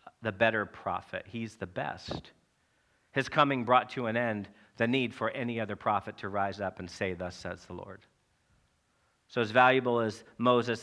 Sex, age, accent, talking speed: male, 40-59, American, 175 wpm